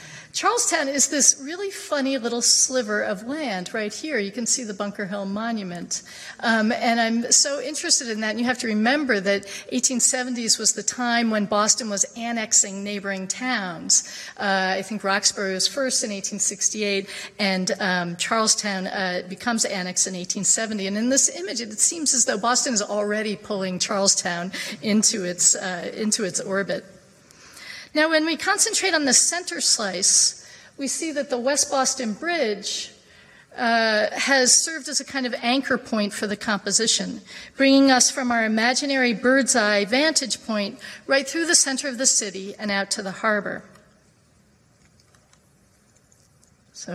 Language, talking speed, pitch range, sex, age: English, 160 wpm, 200-260 Hz, female, 40-59